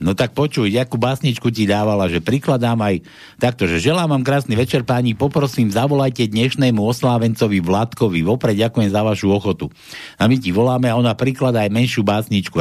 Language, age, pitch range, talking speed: Slovak, 60-79, 110-145 Hz, 175 wpm